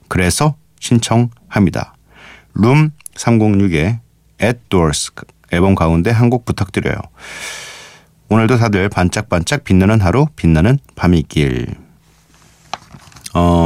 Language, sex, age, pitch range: Korean, male, 40-59, 90-135 Hz